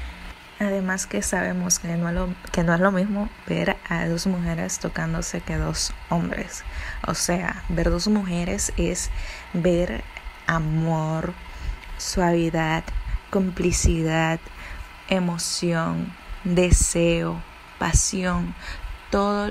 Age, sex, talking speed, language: 20-39, female, 105 wpm, Spanish